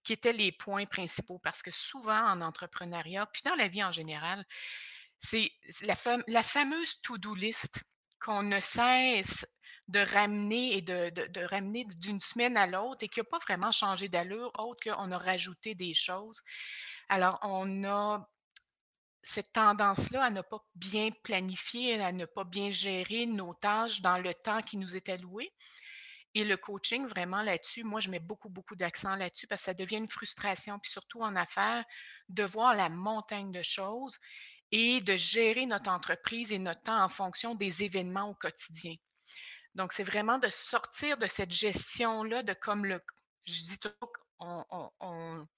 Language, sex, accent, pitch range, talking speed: French, female, Canadian, 185-230 Hz, 170 wpm